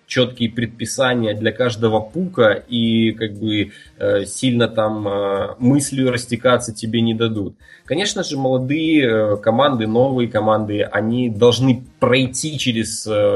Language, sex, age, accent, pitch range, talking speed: Russian, male, 20-39, native, 110-130 Hz, 110 wpm